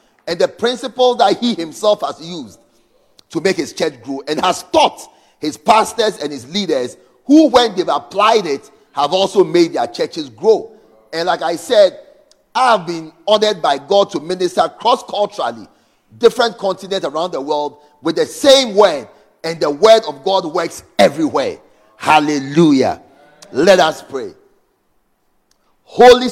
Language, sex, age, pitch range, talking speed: English, male, 40-59, 165-240 Hz, 150 wpm